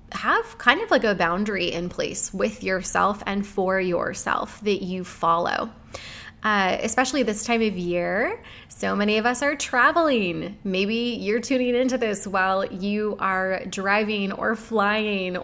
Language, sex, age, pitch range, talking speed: English, female, 20-39, 195-250 Hz, 150 wpm